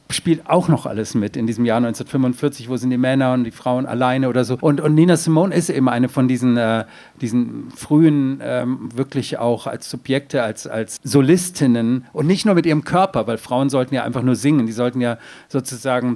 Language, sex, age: German, male, 50-69